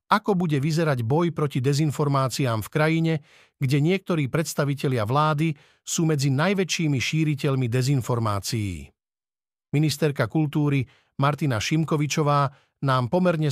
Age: 50-69